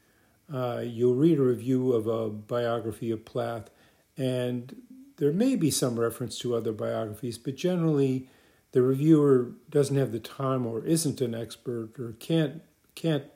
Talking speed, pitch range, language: 155 wpm, 115-145 Hz, English